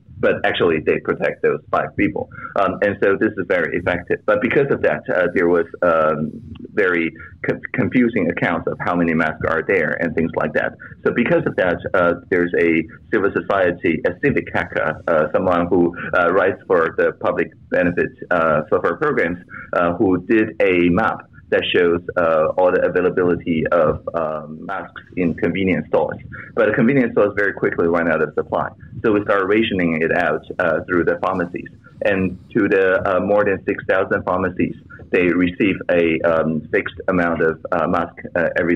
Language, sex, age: English, male, 30-49